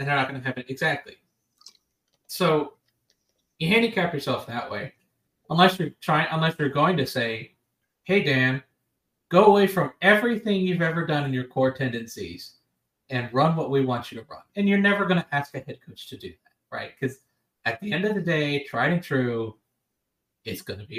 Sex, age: male, 30-49